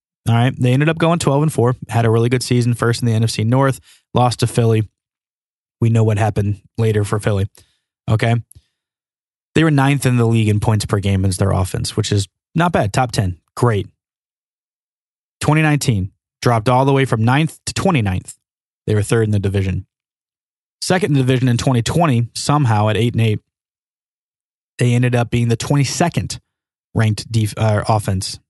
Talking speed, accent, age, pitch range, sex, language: 180 wpm, American, 20-39, 110-125 Hz, male, English